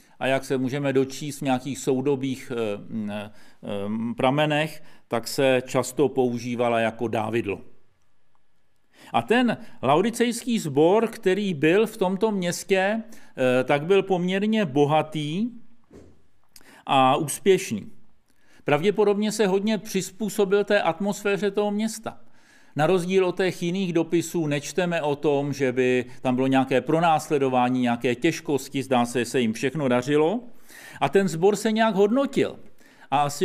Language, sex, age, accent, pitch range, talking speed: Czech, male, 50-69, native, 130-200 Hz, 125 wpm